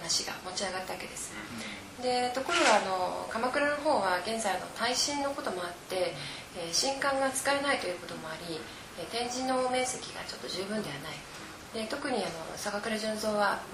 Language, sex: Japanese, female